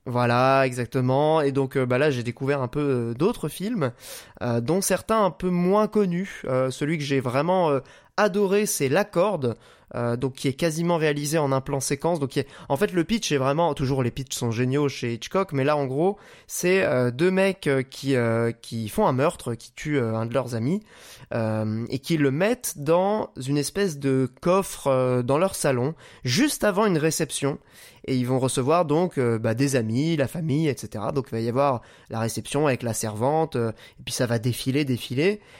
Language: French